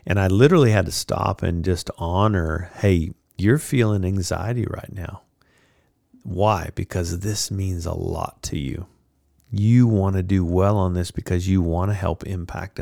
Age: 50-69